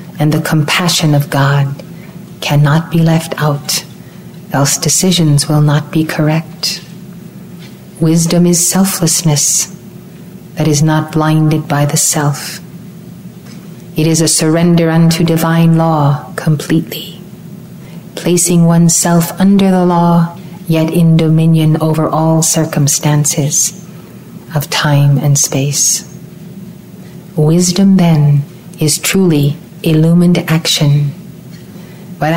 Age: 40-59